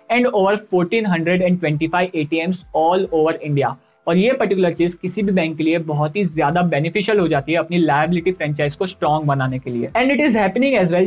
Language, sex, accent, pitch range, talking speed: Hindi, male, native, 165-210 Hz, 190 wpm